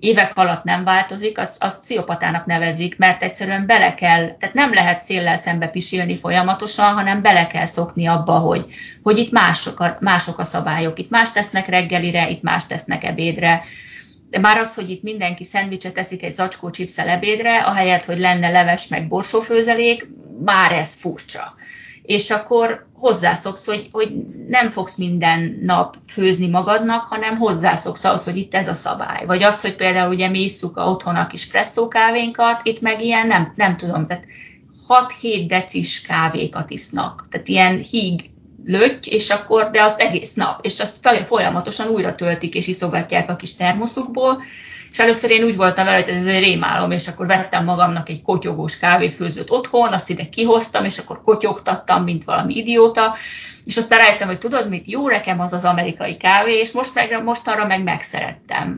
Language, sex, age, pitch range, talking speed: Hungarian, female, 30-49, 180-225 Hz, 170 wpm